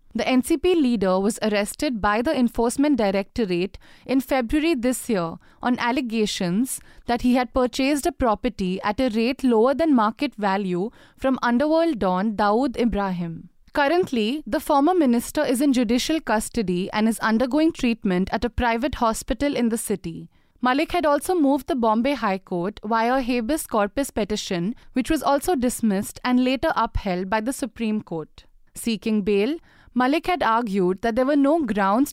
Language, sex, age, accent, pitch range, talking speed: English, female, 20-39, Indian, 210-280 Hz, 160 wpm